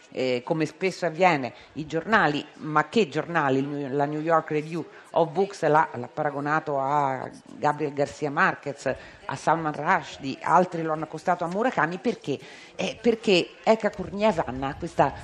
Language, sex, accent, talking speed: Italian, female, native, 150 wpm